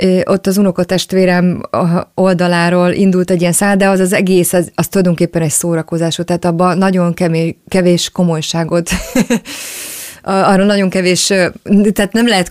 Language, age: Hungarian, 30-49